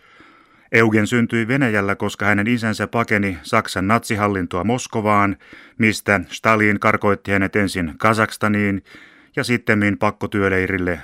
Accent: native